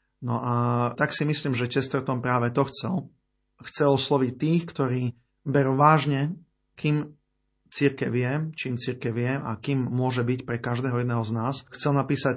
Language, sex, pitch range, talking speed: Slovak, male, 120-140 Hz, 150 wpm